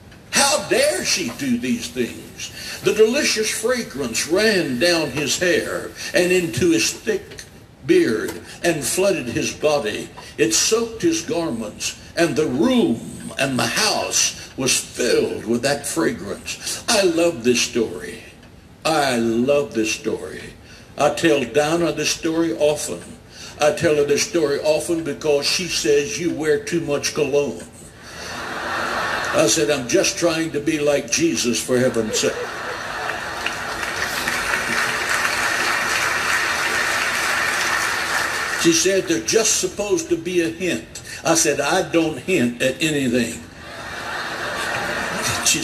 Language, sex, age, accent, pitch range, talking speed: English, male, 60-79, American, 145-235 Hz, 120 wpm